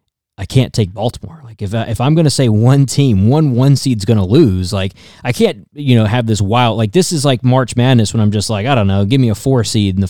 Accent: American